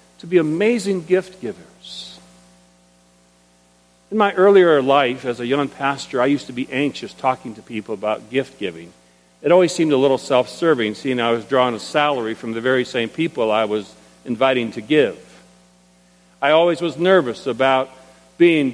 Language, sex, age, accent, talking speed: English, male, 50-69, American, 165 wpm